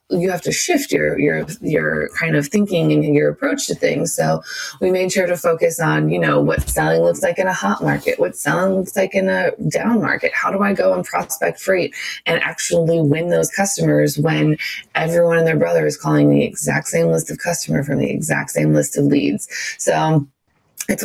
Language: English